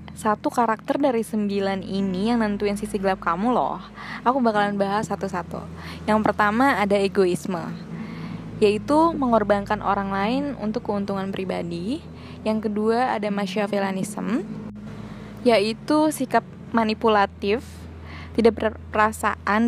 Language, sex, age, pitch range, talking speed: Indonesian, female, 20-39, 200-230 Hz, 105 wpm